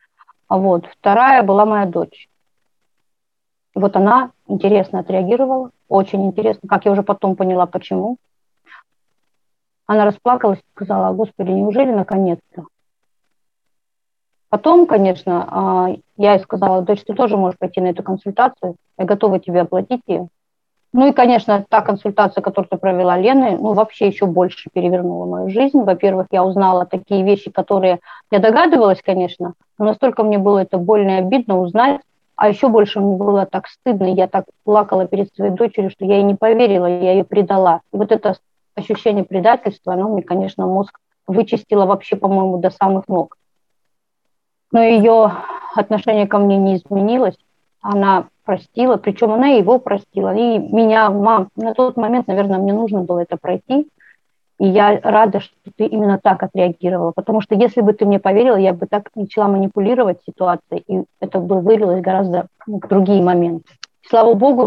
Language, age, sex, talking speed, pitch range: Russian, 30-49, female, 155 wpm, 190-220 Hz